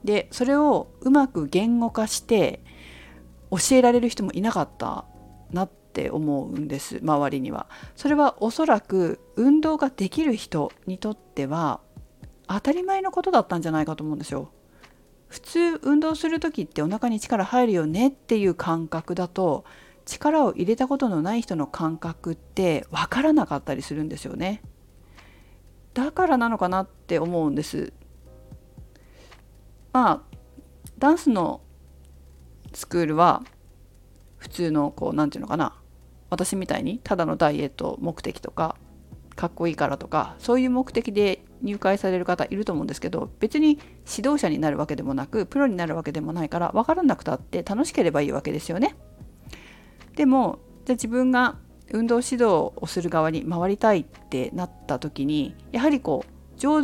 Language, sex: Japanese, female